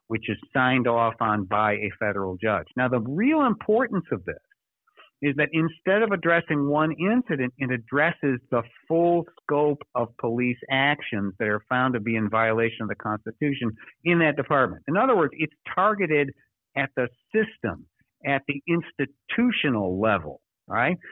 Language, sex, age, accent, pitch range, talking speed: English, male, 60-79, American, 115-150 Hz, 160 wpm